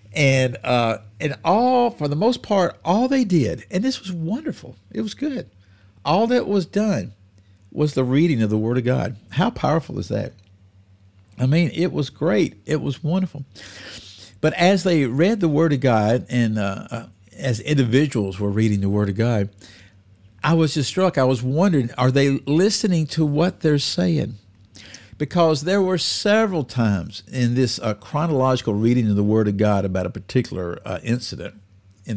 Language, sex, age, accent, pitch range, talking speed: English, male, 50-69, American, 100-160 Hz, 175 wpm